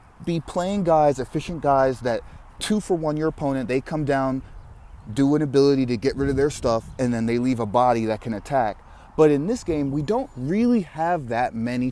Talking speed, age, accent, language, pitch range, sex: 210 wpm, 30-49, American, English, 115-150 Hz, male